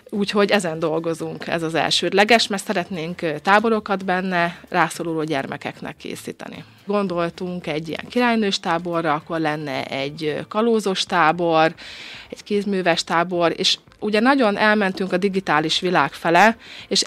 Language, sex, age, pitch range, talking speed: Hungarian, female, 30-49, 165-200 Hz, 125 wpm